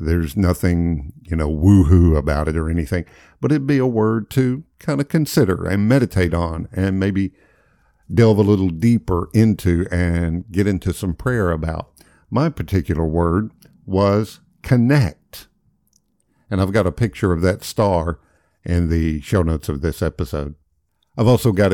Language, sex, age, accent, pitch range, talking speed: English, male, 50-69, American, 85-105 Hz, 155 wpm